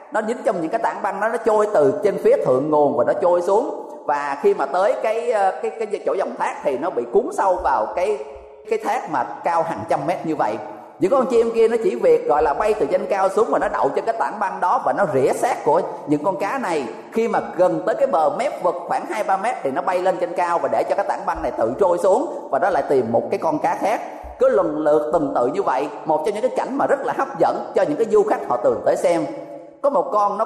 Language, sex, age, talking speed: Vietnamese, male, 20-39, 280 wpm